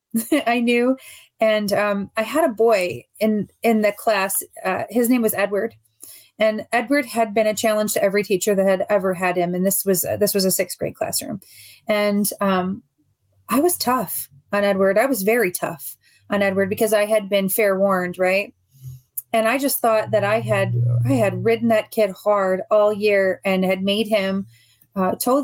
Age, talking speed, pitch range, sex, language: 30-49, 195 wpm, 190-230 Hz, female, English